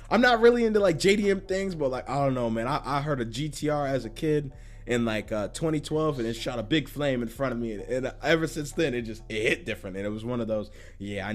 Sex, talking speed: male, 280 wpm